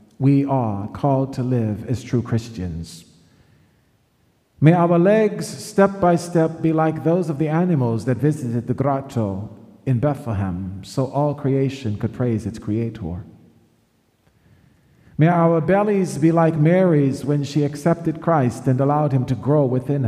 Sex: male